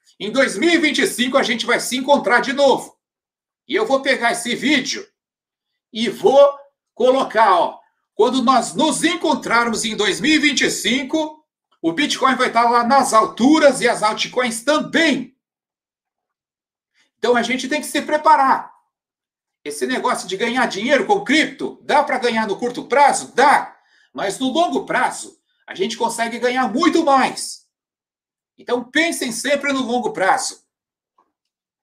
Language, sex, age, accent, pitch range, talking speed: Portuguese, male, 60-79, Brazilian, 240-305 Hz, 140 wpm